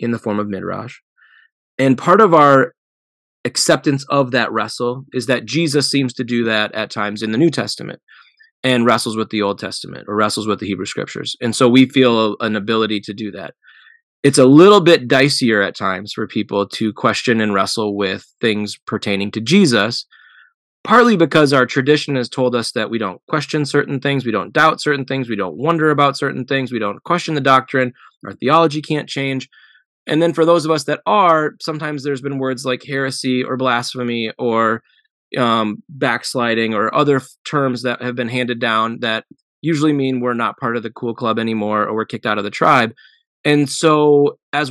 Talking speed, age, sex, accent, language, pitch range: 195 wpm, 20-39, male, American, English, 110-140 Hz